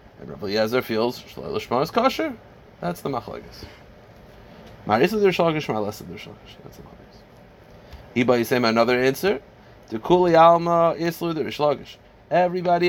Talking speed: 135 wpm